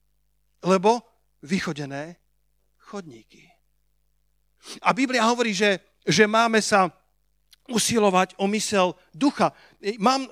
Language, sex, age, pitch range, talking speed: Slovak, male, 50-69, 170-215 Hz, 85 wpm